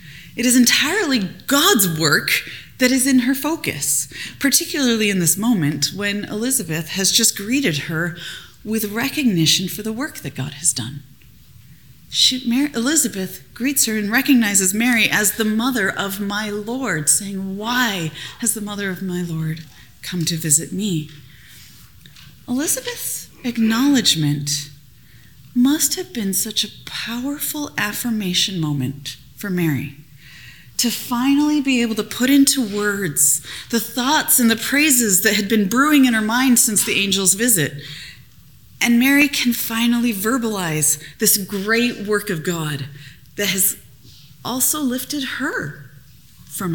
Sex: female